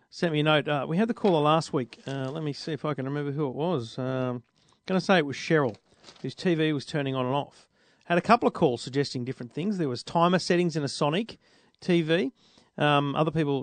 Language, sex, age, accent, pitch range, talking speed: English, male, 40-59, Australian, 145-205 Hz, 245 wpm